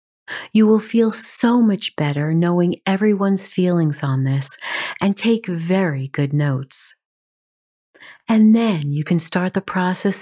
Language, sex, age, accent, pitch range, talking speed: English, female, 50-69, American, 140-200 Hz, 135 wpm